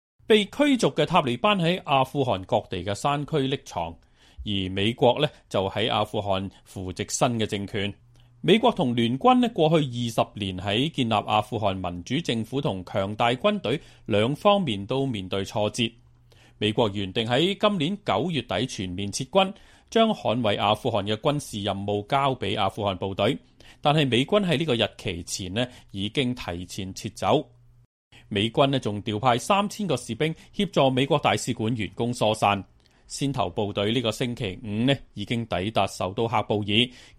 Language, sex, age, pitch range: Chinese, male, 30-49, 105-140 Hz